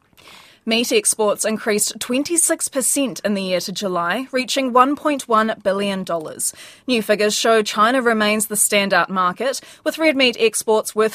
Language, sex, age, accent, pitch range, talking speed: English, female, 20-39, Australian, 180-240 Hz, 135 wpm